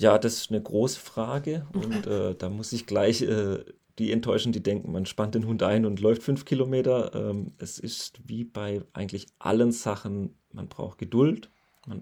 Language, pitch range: German, 100-120 Hz